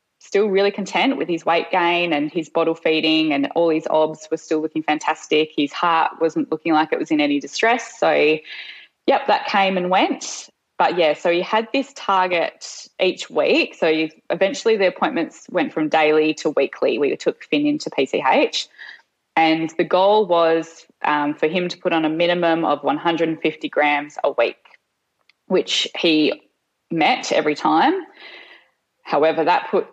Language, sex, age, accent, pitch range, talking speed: English, female, 10-29, Australian, 155-190 Hz, 165 wpm